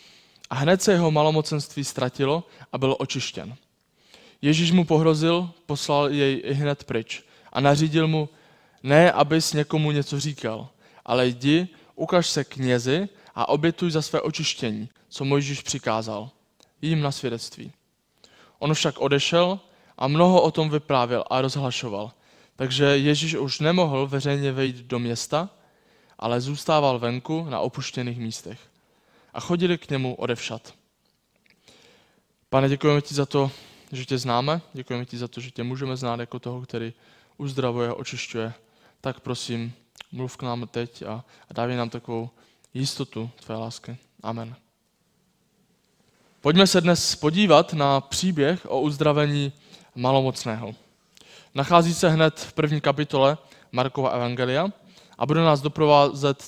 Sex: male